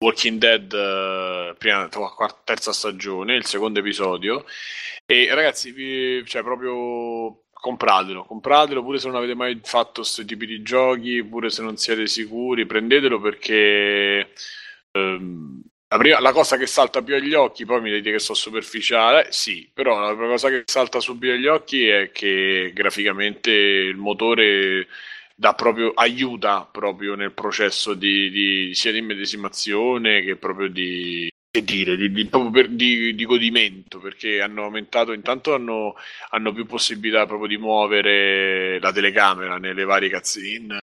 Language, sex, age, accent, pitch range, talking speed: Italian, male, 20-39, native, 95-115 Hz, 145 wpm